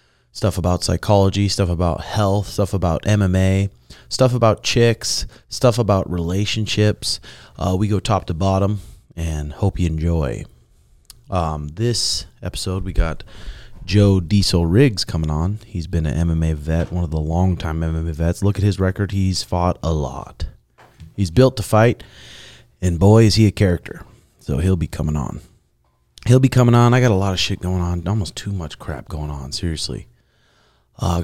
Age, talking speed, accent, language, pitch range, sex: 30-49, 170 wpm, American, English, 85-105 Hz, male